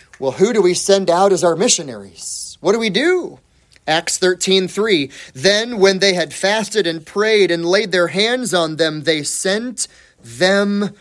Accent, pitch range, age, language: American, 150-205 Hz, 30-49, English